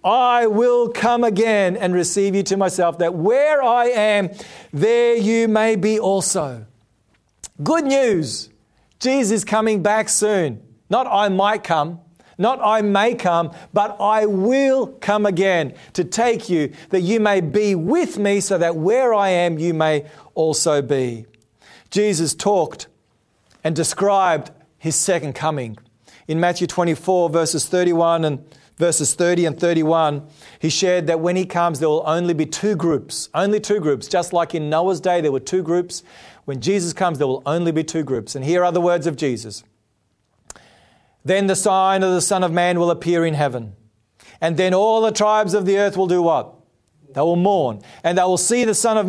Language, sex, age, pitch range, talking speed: English, male, 40-59, 160-205 Hz, 180 wpm